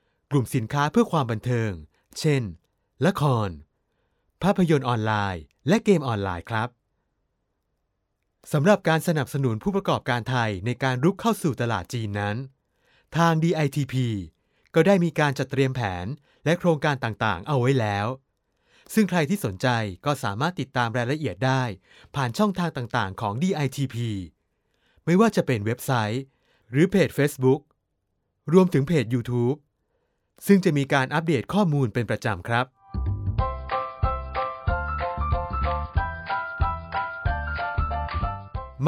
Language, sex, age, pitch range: Thai, male, 20-39, 105-150 Hz